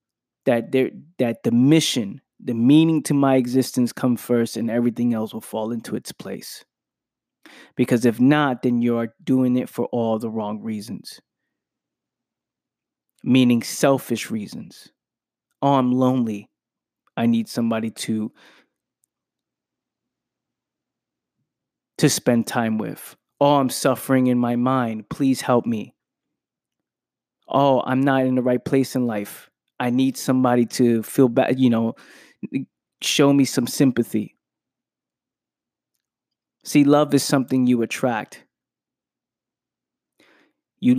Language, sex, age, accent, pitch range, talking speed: English, male, 20-39, American, 115-130 Hz, 120 wpm